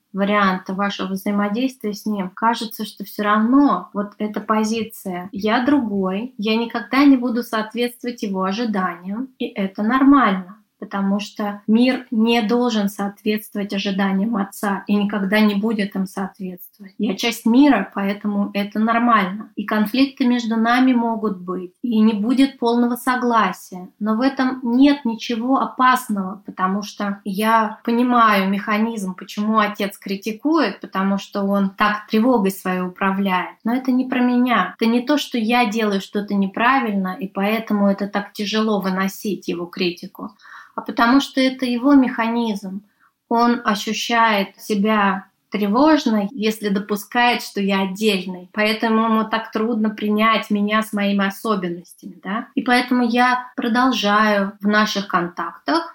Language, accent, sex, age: Russian, native, female, 20-39